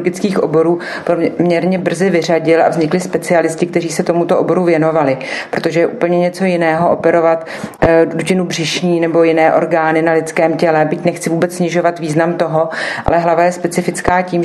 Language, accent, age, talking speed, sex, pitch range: Czech, native, 40-59, 160 wpm, female, 160-175 Hz